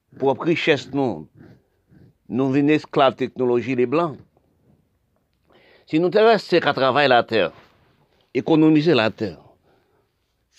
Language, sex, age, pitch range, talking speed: French, male, 50-69, 115-145 Hz, 115 wpm